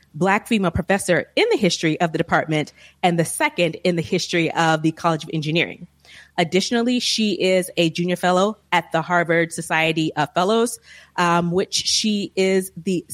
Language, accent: English, American